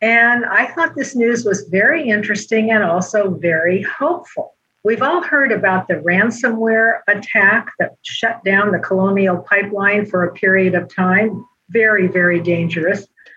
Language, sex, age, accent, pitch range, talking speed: English, female, 50-69, American, 185-225 Hz, 150 wpm